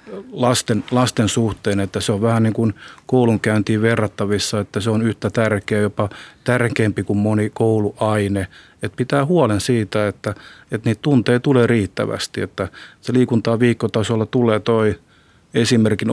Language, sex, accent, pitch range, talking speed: Finnish, male, native, 100-115 Hz, 140 wpm